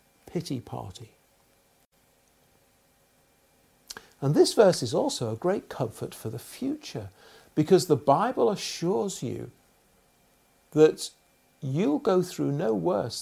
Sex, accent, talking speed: male, British, 110 wpm